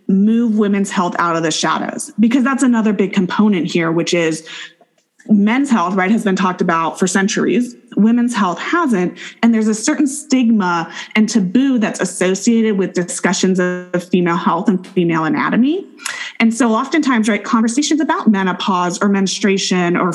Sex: female